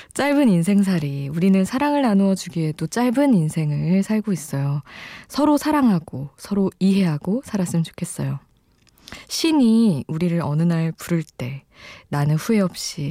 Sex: female